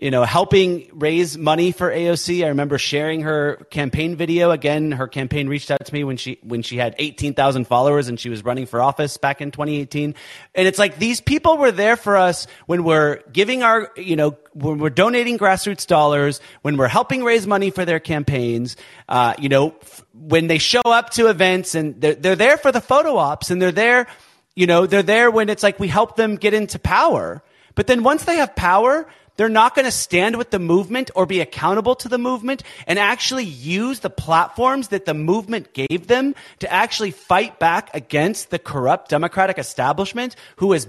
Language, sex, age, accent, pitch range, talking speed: English, male, 30-49, American, 150-240 Hz, 210 wpm